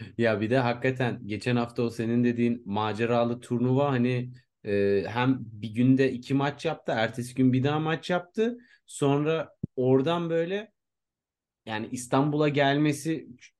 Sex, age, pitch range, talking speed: male, 30-49, 125-155 Hz, 135 wpm